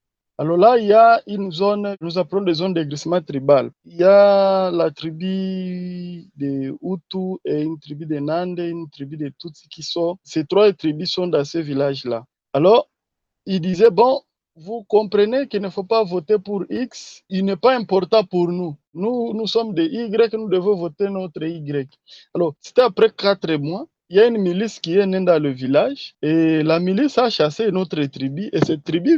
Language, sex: French, male